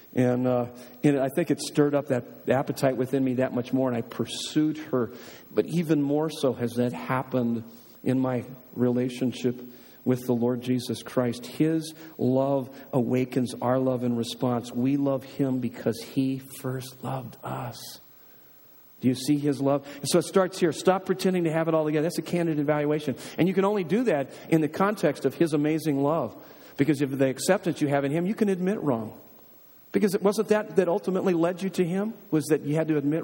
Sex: male